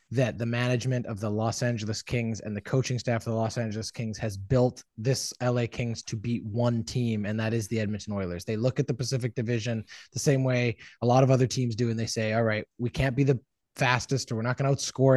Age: 20-39